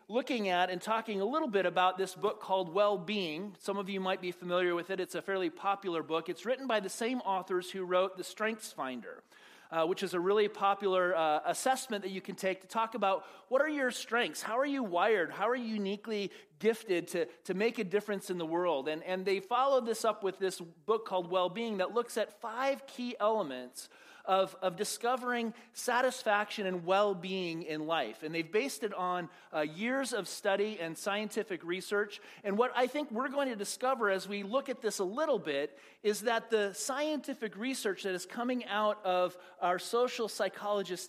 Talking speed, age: 200 wpm, 30-49